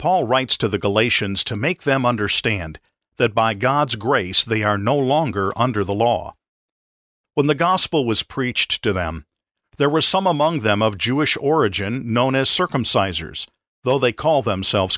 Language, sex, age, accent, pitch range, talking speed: English, male, 50-69, American, 100-145 Hz, 170 wpm